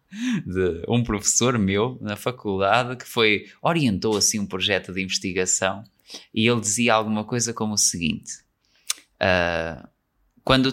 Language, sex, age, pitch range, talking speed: Portuguese, male, 20-39, 105-150 Hz, 135 wpm